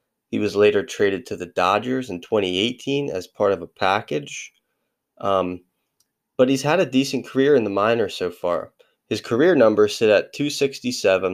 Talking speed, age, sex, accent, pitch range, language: 170 wpm, 20-39, male, American, 95-130 Hz, English